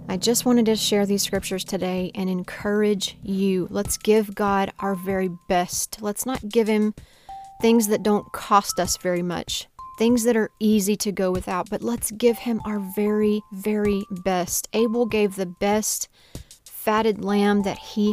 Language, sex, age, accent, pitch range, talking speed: English, female, 30-49, American, 185-210 Hz, 170 wpm